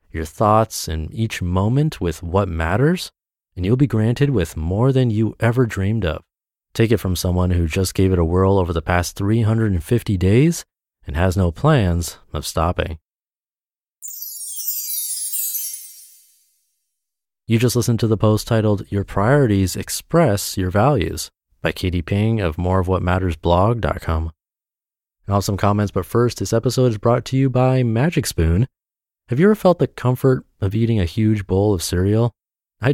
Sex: male